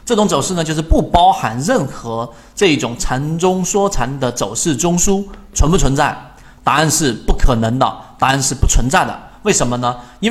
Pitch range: 125-185 Hz